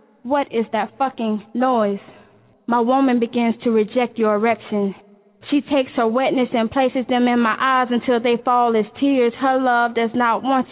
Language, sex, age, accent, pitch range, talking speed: English, female, 10-29, American, 240-290 Hz, 180 wpm